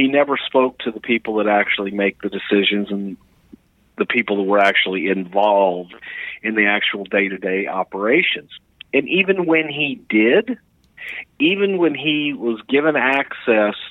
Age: 50-69